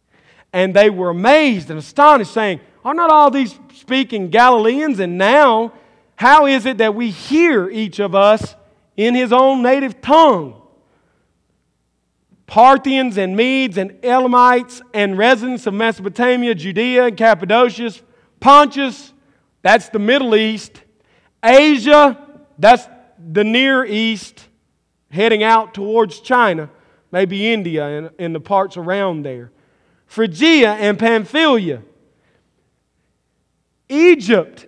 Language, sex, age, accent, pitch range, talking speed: English, male, 40-59, American, 175-250 Hz, 115 wpm